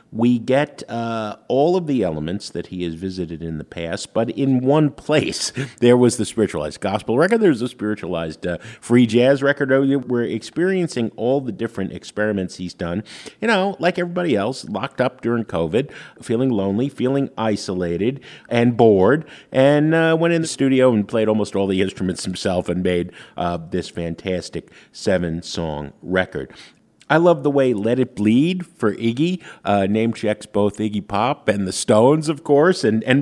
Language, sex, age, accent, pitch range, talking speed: English, male, 50-69, American, 90-135 Hz, 175 wpm